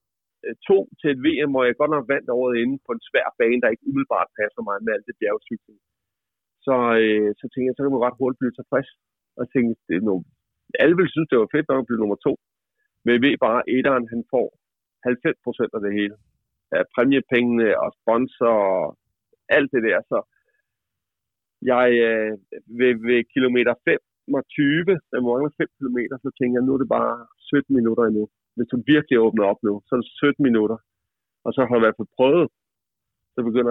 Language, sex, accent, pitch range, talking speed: Danish, male, native, 110-145 Hz, 200 wpm